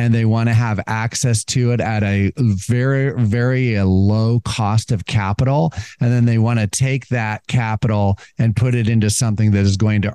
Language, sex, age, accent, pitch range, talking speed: English, male, 40-59, American, 105-130 Hz, 195 wpm